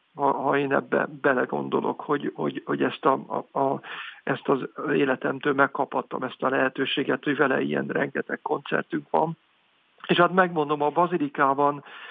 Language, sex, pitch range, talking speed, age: Hungarian, male, 140-160 Hz, 130 wpm, 60-79